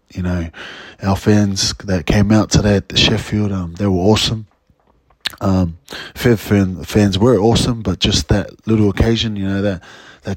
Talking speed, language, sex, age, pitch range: 175 wpm, English, male, 20-39, 95-110 Hz